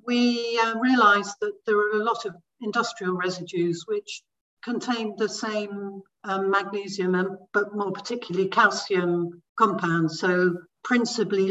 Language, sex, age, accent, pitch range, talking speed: English, female, 60-79, British, 180-215 Hz, 130 wpm